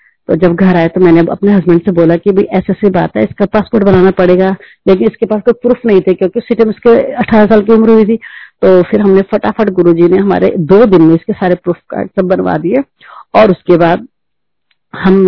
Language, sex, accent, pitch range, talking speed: Hindi, female, native, 170-200 Hz, 215 wpm